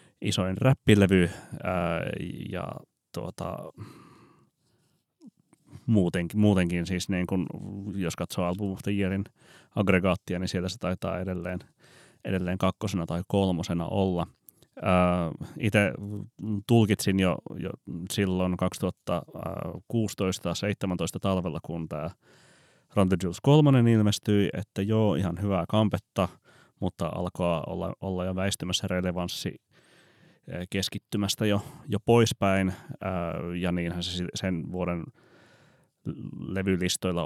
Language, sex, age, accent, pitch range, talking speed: Finnish, male, 30-49, native, 90-110 Hz, 90 wpm